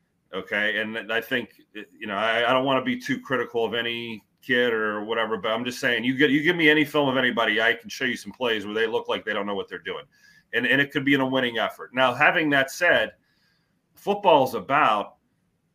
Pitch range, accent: 120-155 Hz, American